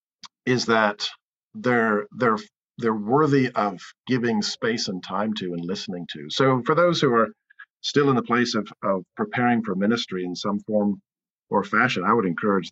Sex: male